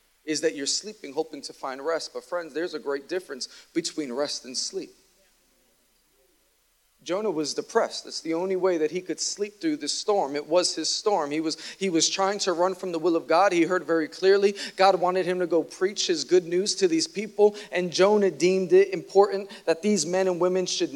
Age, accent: 40-59, American